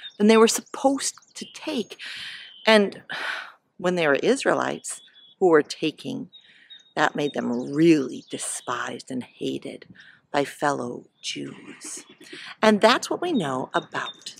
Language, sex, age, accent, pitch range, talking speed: English, female, 40-59, American, 195-275 Hz, 125 wpm